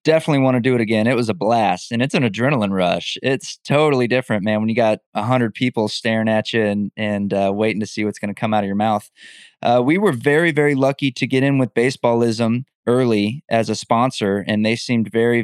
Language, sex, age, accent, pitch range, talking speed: English, male, 20-39, American, 105-125 Hz, 235 wpm